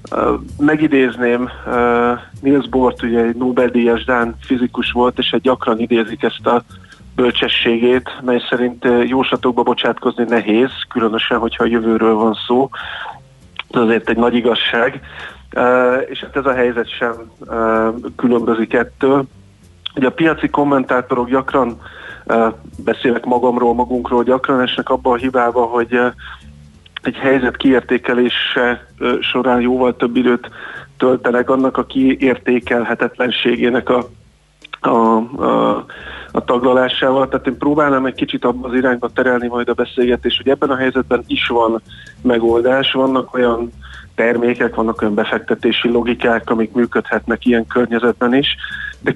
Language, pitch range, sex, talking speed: Hungarian, 115-130 Hz, male, 135 wpm